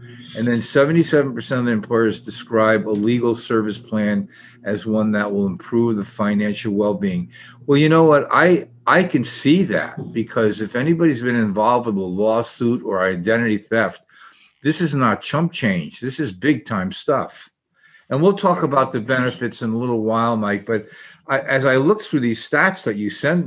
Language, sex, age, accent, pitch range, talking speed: English, male, 50-69, American, 105-135 Hz, 180 wpm